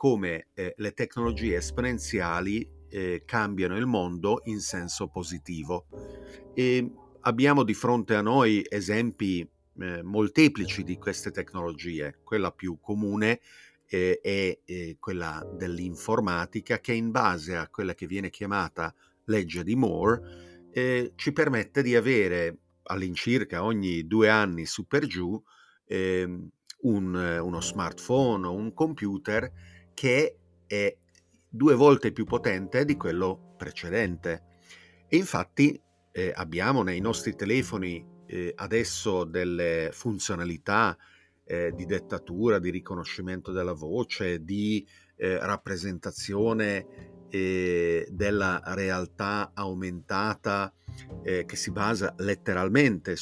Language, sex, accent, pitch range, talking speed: Italian, male, native, 90-110 Hz, 115 wpm